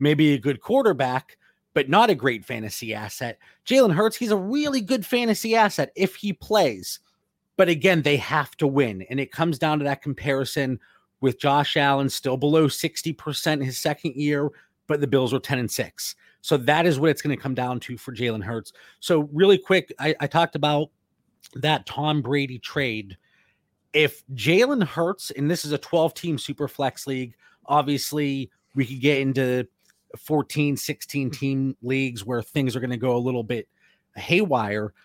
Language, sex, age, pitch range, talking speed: English, male, 30-49, 130-170 Hz, 180 wpm